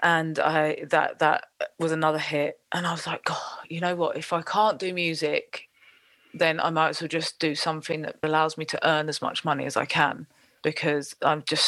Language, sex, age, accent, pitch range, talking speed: English, female, 30-49, British, 155-180 Hz, 215 wpm